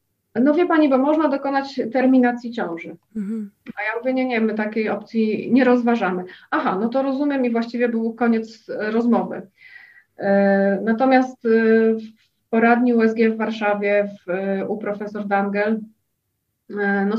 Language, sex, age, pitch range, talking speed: Polish, female, 30-49, 195-230 Hz, 135 wpm